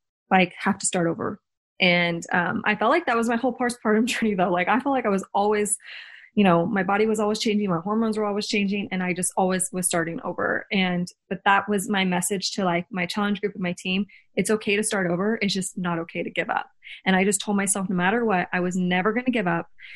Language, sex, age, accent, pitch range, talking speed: English, female, 20-39, American, 185-215 Hz, 255 wpm